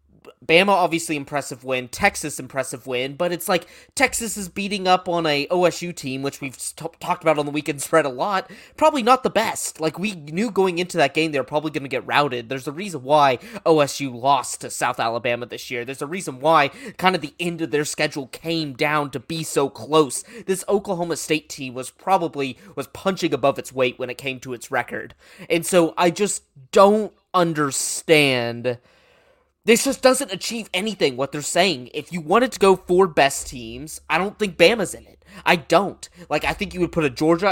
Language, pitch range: English, 140-185 Hz